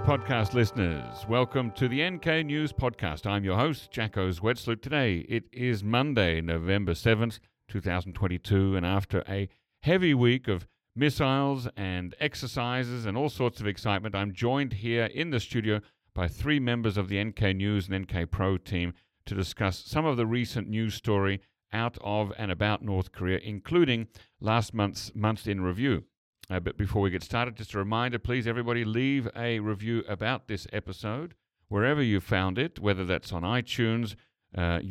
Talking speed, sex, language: 165 wpm, male, English